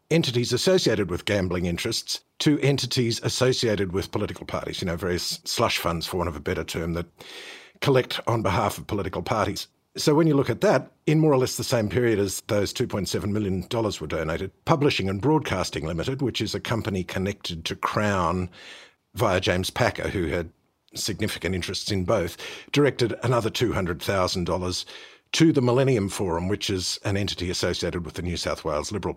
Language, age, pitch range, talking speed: English, 50-69, 95-125 Hz, 175 wpm